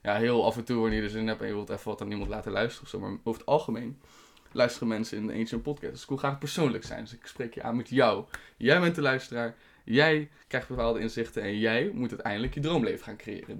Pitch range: 115-140 Hz